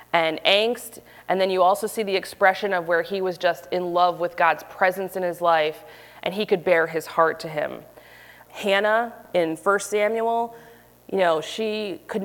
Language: English